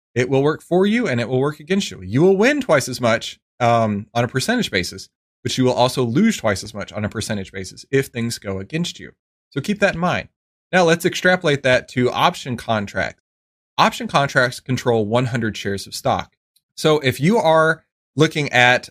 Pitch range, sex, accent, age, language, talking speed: 105-150 Hz, male, American, 30-49, English, 205 wpm